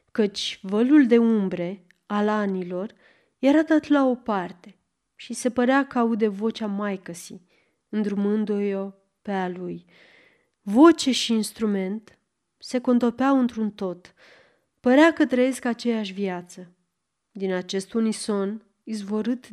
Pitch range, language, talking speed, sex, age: 195-245 Hz, Romanian, 120 wpm, female, 30-49